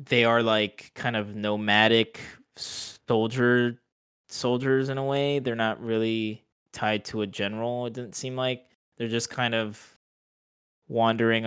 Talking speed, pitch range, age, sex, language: 140 wpm, 100-120 Hz, 20-39, male, English